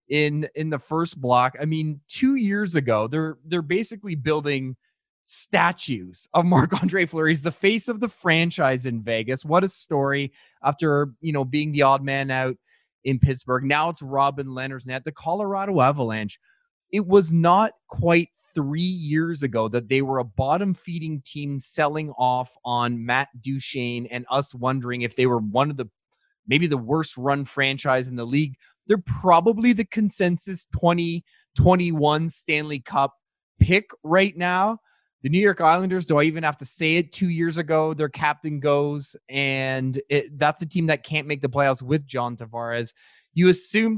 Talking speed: 170 wpm